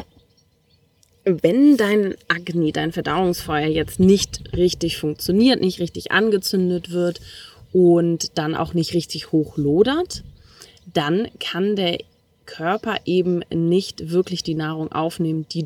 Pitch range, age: 160-200 Hz, 20-39